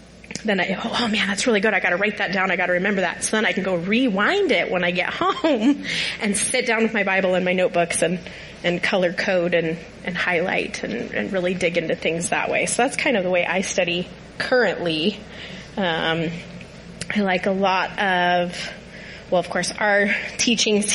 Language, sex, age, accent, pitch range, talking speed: English, female, 30-49, American, 175-210 Hz, 210 wpm